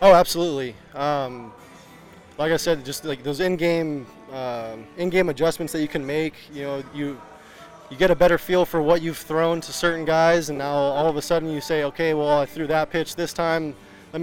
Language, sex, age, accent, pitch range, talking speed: English, male, 20-39, American, 135-165 Hz, 210 wpm